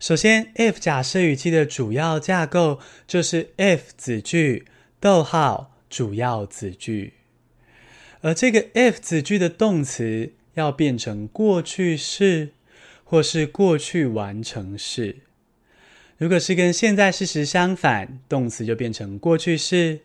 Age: 20-39